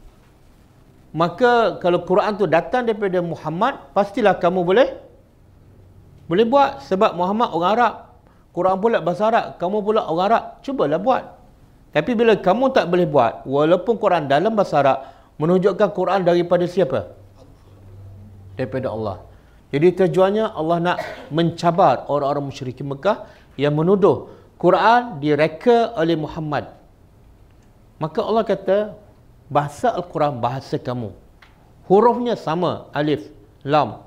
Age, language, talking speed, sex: 50-69, English, 120 wpm, male